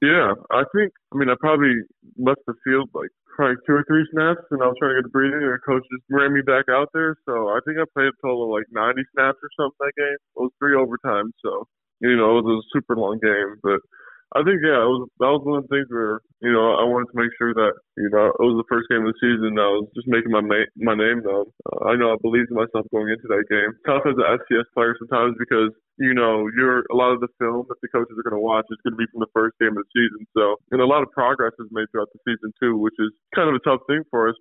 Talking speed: 285 wpm